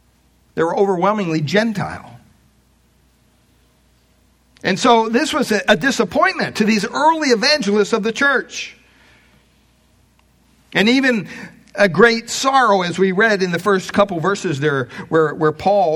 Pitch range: 155-220 Hz